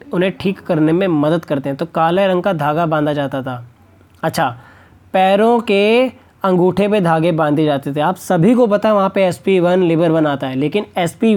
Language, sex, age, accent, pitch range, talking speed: Hindi, male, 20-39, native, 150-200 Hz, 205 wpm